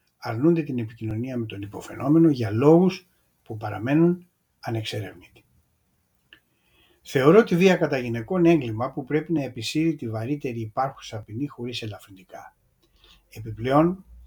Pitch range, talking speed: 110-155 Hz, 120 wpm